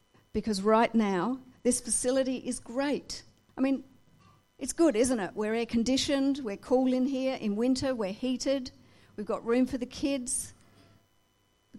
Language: English